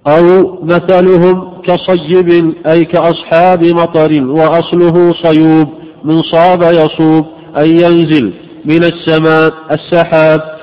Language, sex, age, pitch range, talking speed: Arabic, male, 50-69, 160-180 Hz, 90 wpm